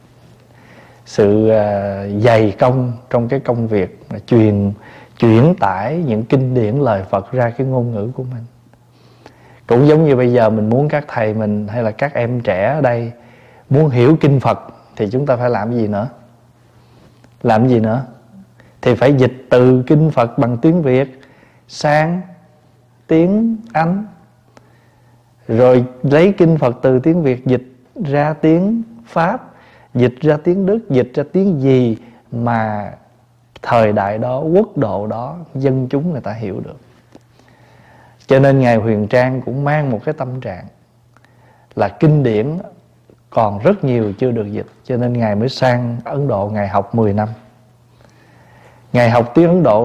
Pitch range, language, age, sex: 115-140 Hz, Vietnamese, 20-39, male